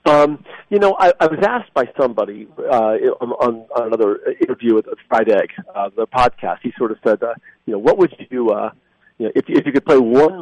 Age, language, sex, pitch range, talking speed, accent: 40-59, English, male, 115-150 Hz, 235 wpm, American